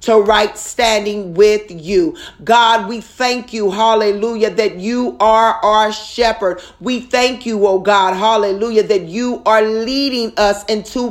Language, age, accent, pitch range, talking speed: English, 40-59, American, 215-240 Hz, 145 wpm